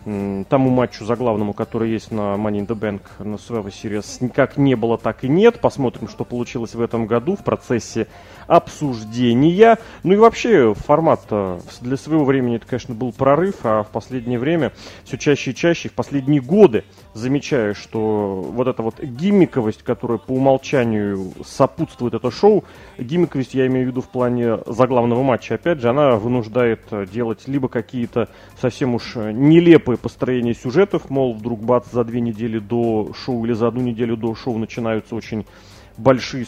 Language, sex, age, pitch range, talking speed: Russian, male, 30-49, 110-135 Hz, 160 wpm